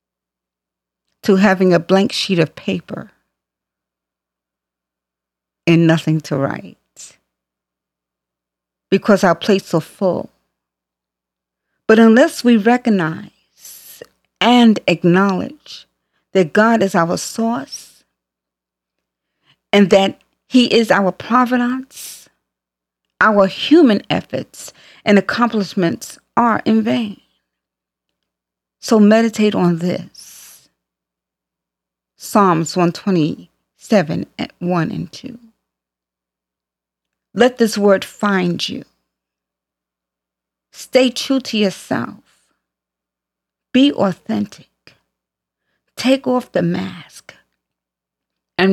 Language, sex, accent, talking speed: English, female, American, 85 wpm